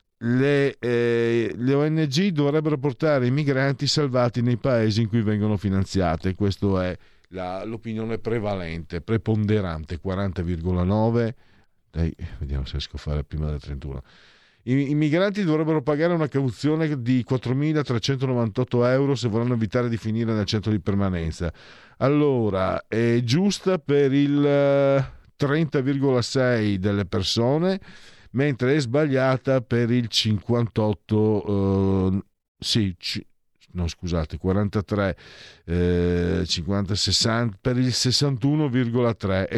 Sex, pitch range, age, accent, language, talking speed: male, 100-135 Hz, 50-69, native, Italian, 115 wpm